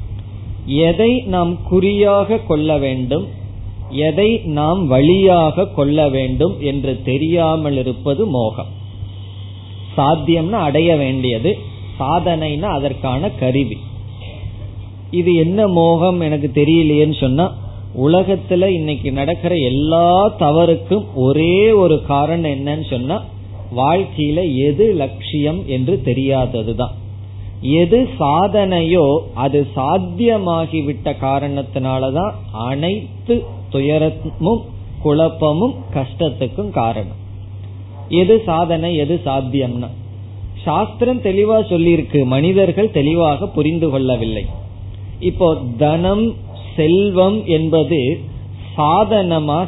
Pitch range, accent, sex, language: 105-165 Hz, native, male, Tamil